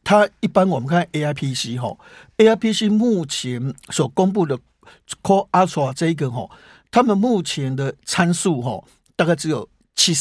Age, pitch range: 60-79, 150-195 Hz